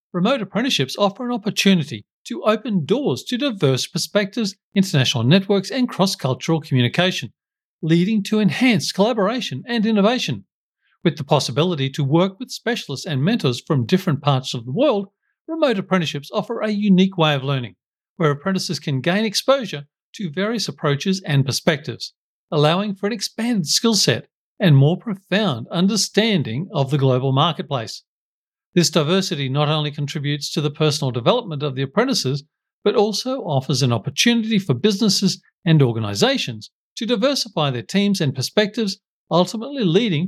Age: 50-69